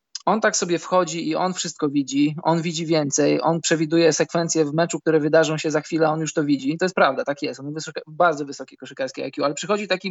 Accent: native